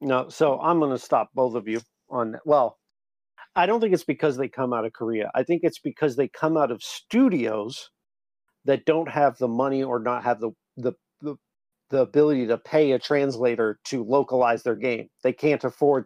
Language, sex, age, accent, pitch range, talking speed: English, male, 50-69, American, 115-145 Hz, 200 wpm